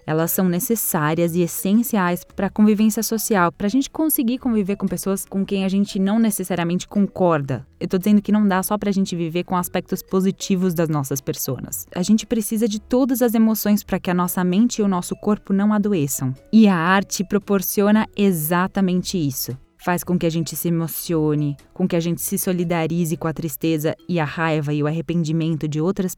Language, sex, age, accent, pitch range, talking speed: Portuguese, female, 10-29, Brazilian, 170-210 Hz, 200 wpm